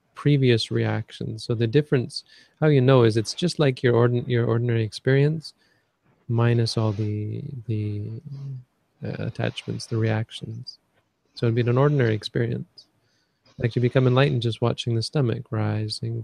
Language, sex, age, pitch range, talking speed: English, male, 30-49, 110-135 Hz, 150 wpm